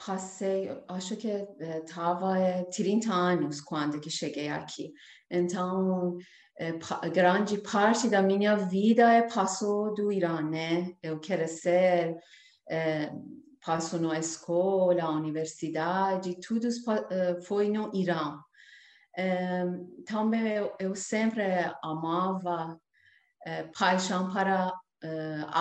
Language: Portuguese